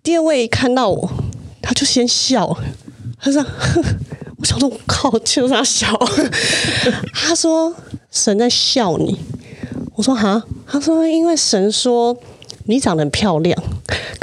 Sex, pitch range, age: female, 165-235 Hz, 30-49